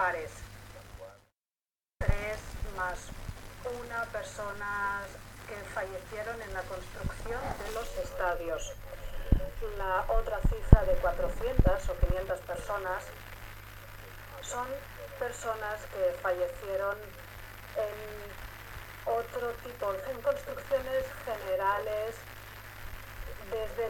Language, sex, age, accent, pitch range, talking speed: Spanish, female, 40-59, Spanish, 175-270 Hz, 80 wpm